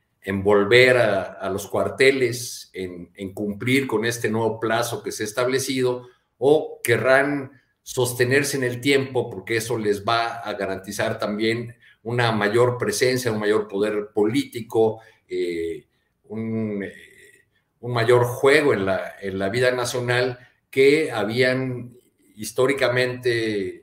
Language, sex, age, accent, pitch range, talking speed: Spanish, male, 50-69, Mexican, 105-125 Hz, 130 wpm